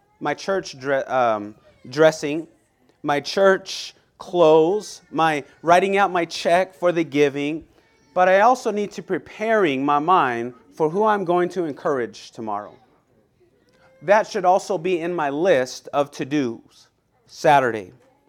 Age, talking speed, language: 30-49, 130 wpm, English